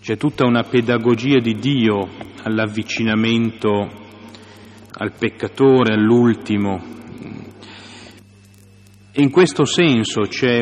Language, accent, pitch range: Italian, native, 100-125 Hz